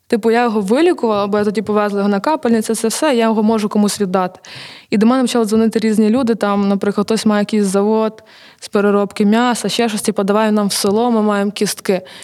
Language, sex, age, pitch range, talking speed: Ukrainian, female, 20-39, 200-225 Hz, 215 wpm